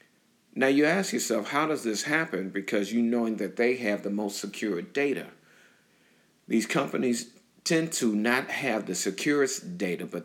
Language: English